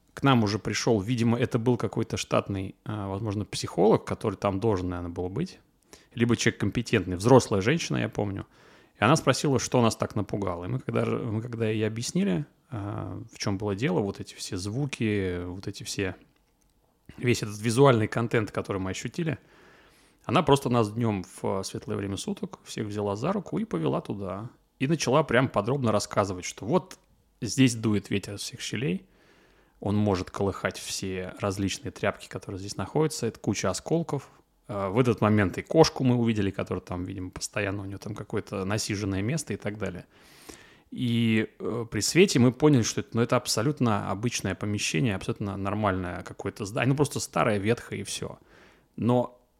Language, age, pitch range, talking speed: Russian, 30-49, 100-125 Hz, 170 wpm